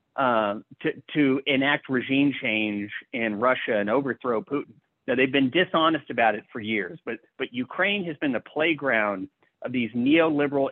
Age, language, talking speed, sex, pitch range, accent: 40-59, English, 160 wpm, male, 120-155 Hz, American